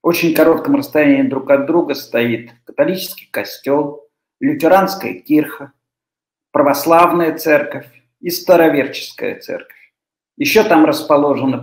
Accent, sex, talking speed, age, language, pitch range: native, male, 100 wpm, 50-69, Russian, 140-200 Hz